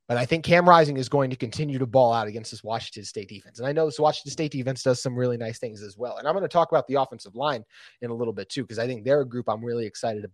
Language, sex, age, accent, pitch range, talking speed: English, male, 30-49, American, 115-135 Hz, 315 wpm